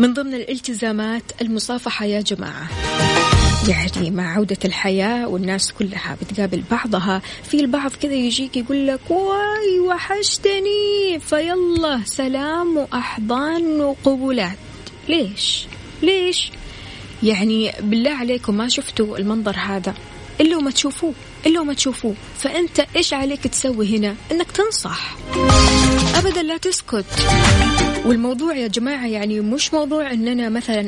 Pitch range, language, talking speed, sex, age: 205-280 Hz, Arabic, 115 wpm, female, 20-39